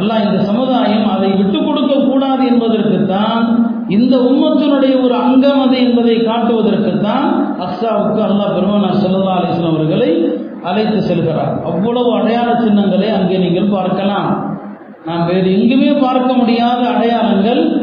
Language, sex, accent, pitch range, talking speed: Tamil, male, native, 205-250 Hz, 105 wpm